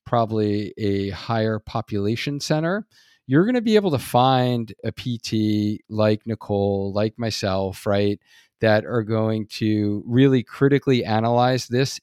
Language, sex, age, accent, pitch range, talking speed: English, male, 40-59, American, 105-125 Hz, 135 wpm